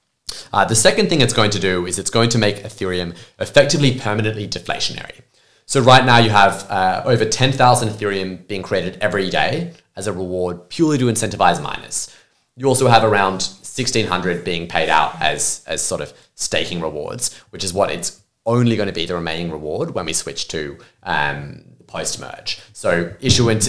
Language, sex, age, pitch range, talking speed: English, male, 20-39, 95-120 Hz, 185 wpm